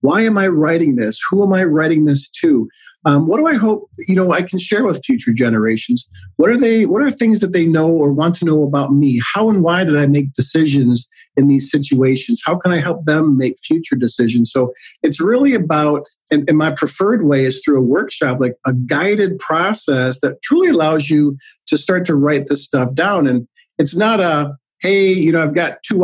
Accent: American